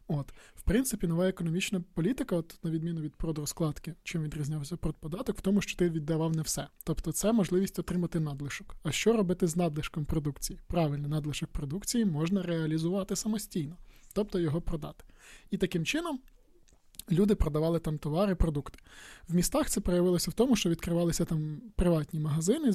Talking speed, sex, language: 160 wpm, male, Ukrainian